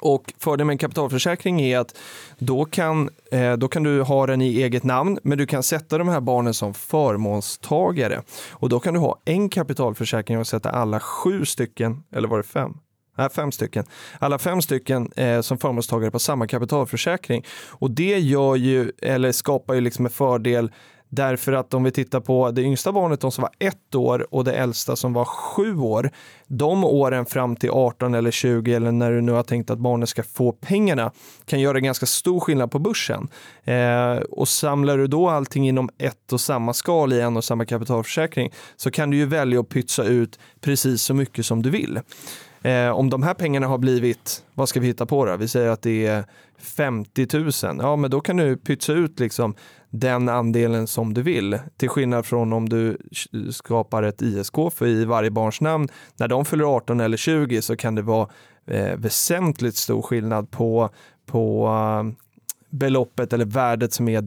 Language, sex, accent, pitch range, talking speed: Swedish, male, native, 115-145 Hz, 195 wpm